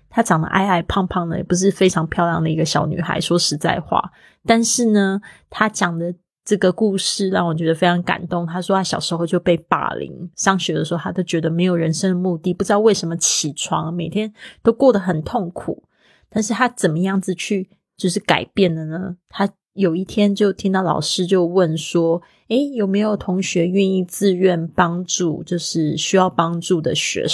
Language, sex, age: Chinese, female, 20-39